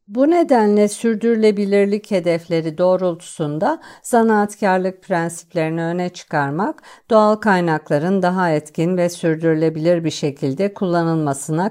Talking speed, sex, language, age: 90 wpm, female, Turkish, 50-69